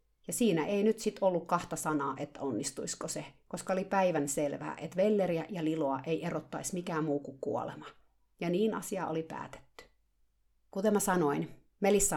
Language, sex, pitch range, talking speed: Finnish, female, 155-220 Hz, 170 wpm